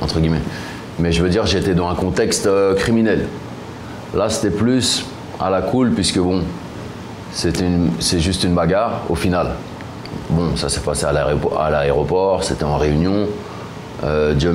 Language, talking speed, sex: French, 165 wpm, male